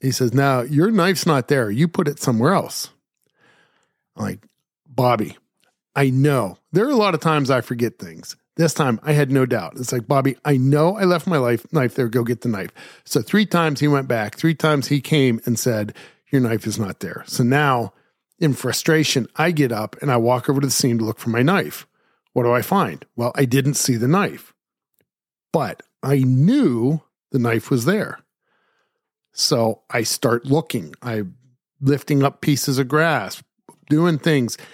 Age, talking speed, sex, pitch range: 40-59, 195 wpm, male, 120-155 Hz